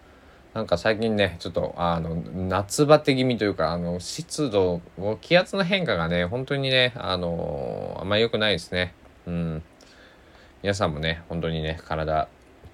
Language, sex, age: Japanese, male, 20-39